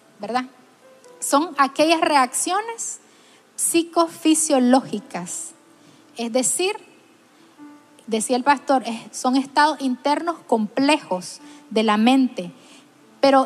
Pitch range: 245-300 Hz